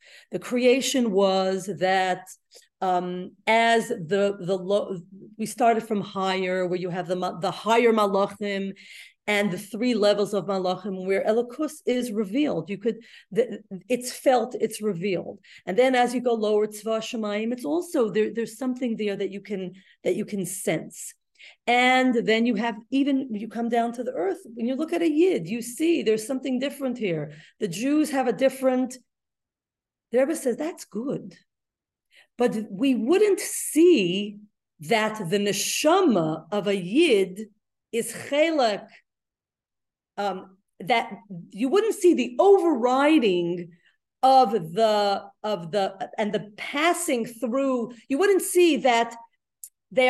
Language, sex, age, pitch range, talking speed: English, female, 40-59, 200-260 Hz, 145 wpm